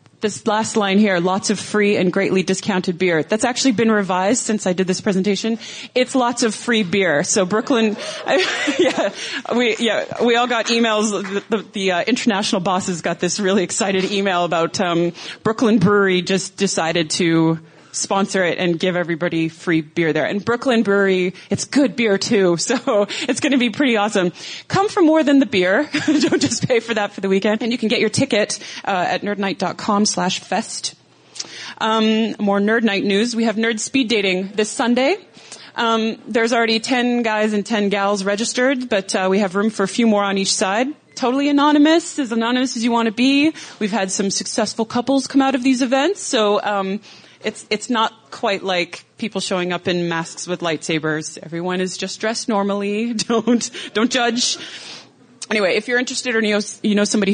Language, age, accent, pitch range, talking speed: English, 30-49, American, 190-235 Hz, 190 wpm